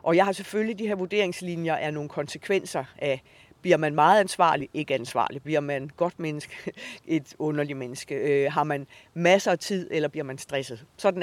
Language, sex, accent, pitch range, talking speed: English, female, Danish, 150-190 Hz, 185 wpm